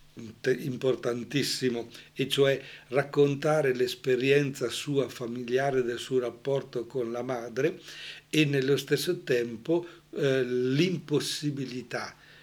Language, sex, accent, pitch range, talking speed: Italian, male, native, 120-140 Hz, 90 wpm